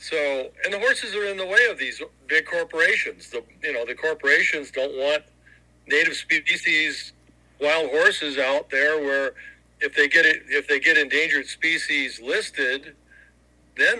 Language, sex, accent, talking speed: English, male, American, 160 wpm